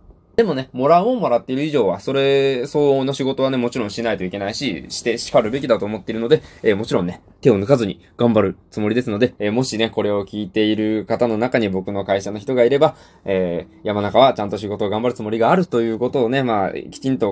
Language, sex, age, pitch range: Japanese, male, 20-39, 95-135 Hz